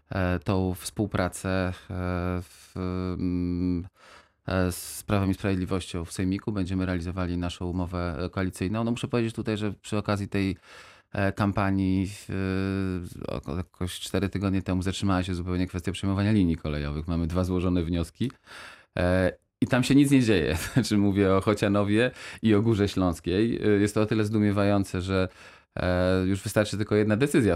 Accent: native